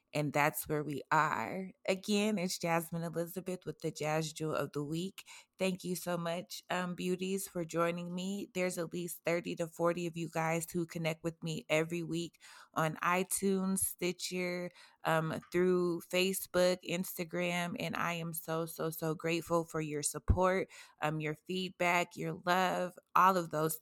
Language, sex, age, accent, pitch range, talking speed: English, female, 20-39, American, 165-185 Hz, 165 wpm